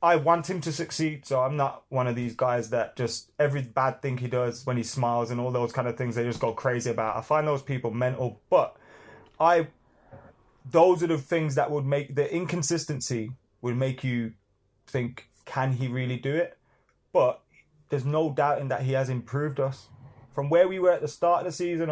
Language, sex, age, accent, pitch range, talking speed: English, male, 20-39, British, 120-150 Hz, 215 wpm